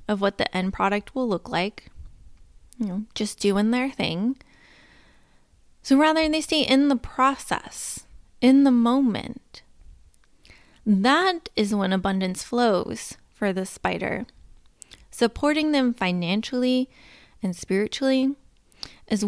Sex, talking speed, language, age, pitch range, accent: female, 120 wpm, English, 20-39, 170-245 Hz, American